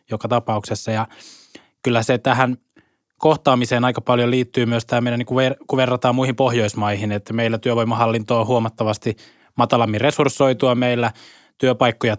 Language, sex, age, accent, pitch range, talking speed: Finnish, male, 20-39, native, 115-135 Hz, 130 wpm